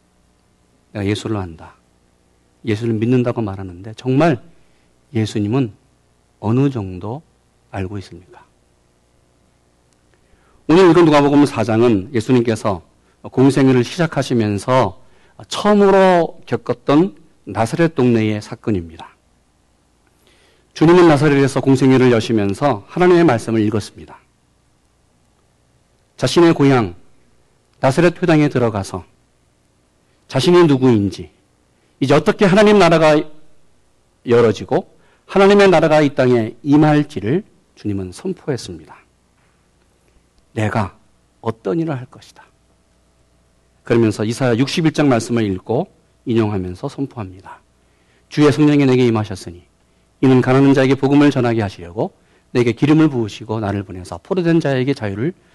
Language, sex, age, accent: Korean, male, 40-59, native